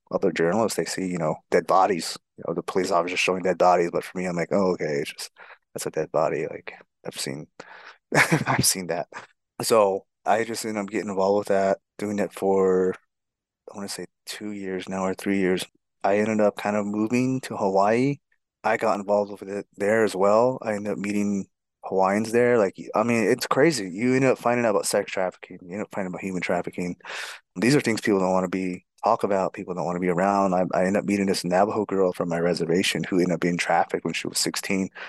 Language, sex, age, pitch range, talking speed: English, male, 30-49, 90-105 Hz, 230 wpm